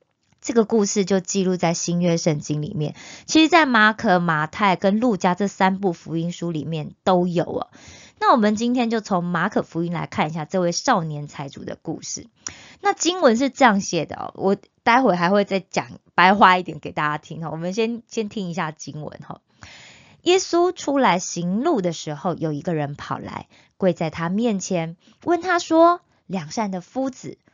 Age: 20-39